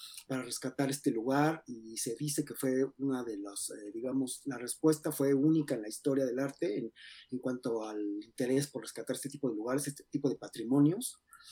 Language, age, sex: Spanish, 30-49, male